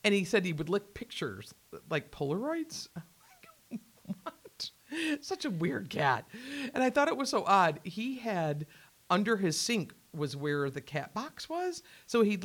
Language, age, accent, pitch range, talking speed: English, 50-69, American, 130-190 Hz, 170 wpm